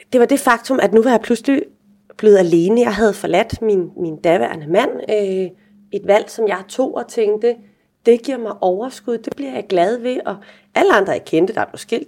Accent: native